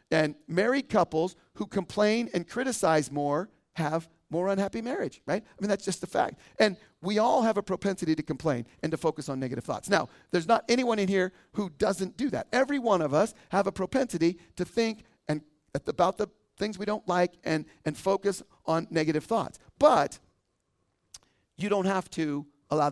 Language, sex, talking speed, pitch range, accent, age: English, male, 185 wpm, 165-220 Hz, American, 40-59